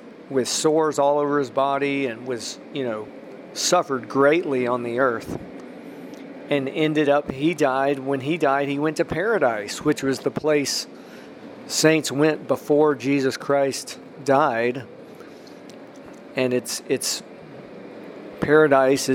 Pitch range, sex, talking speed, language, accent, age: 130-150 Hz, male, 130 wpm, English, American, 40-59